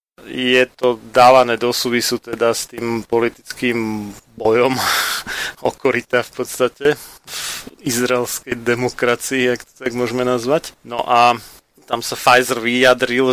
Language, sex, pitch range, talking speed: Slovak, male, 115-125 Hz, 120 wpm